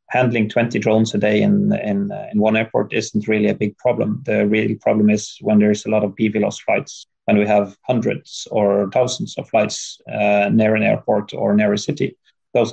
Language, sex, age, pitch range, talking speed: English, male, 30-49, 105-115 Hz, 205 wpm